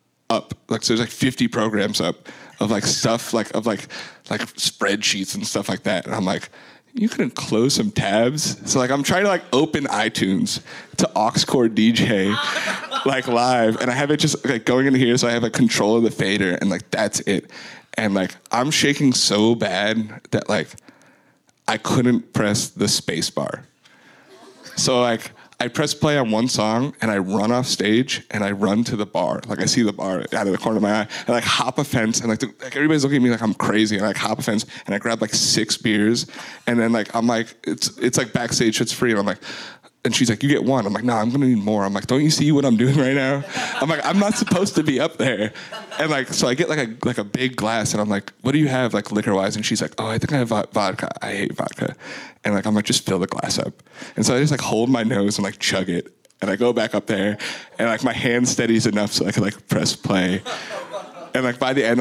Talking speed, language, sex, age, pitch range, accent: 250 wpm, English, male, 30-49, 105-130 Hz, American